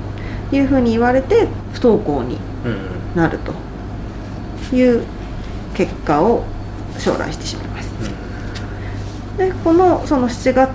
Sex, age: female, 30-49